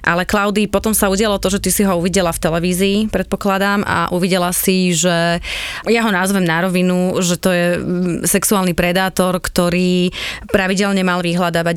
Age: 20-39